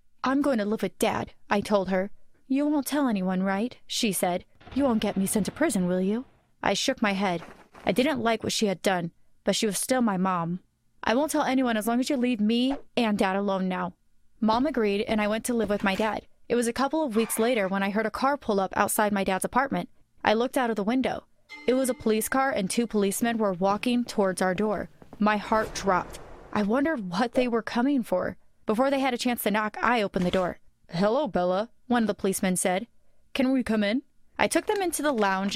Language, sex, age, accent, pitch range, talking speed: English, female, 20-39, American, 200-255 Hz, 240 wpm